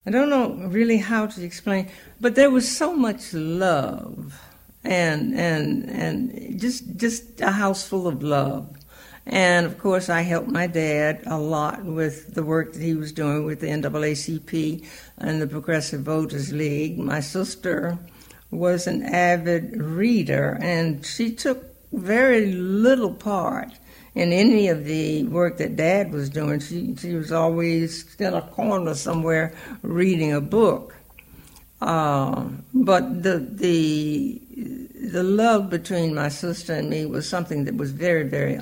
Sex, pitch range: female, 155-205 Hz